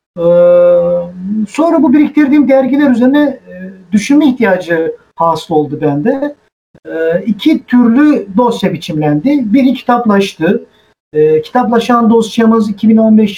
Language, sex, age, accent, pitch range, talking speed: Turkish, male, 50-69, native, 190-240 Hz, 105 wpm